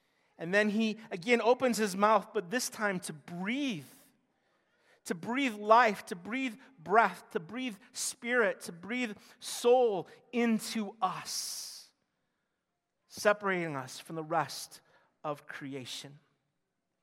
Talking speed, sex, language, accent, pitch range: 115 wpm, male, English, American, 180-245 Hz